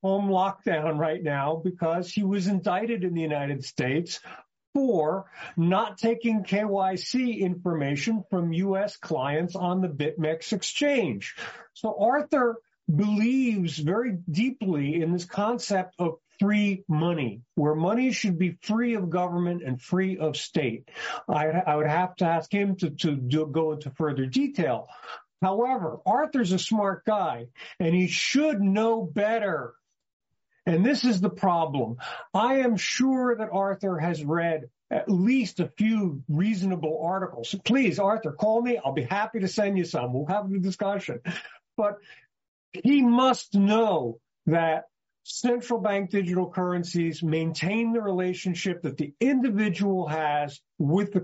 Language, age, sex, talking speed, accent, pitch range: English, 50-69, male, 140 wpm, American, 160-215 Hz